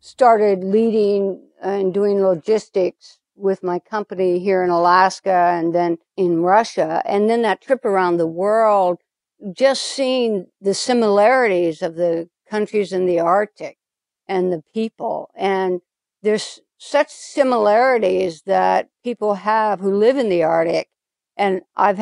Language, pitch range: English, 180-215 Hz